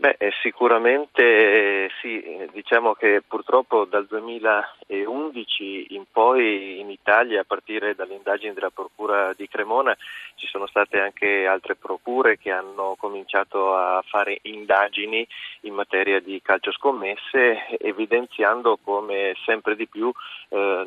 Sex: male